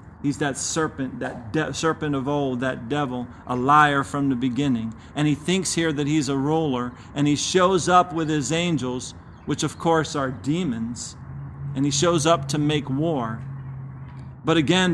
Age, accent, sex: 40-59, American, male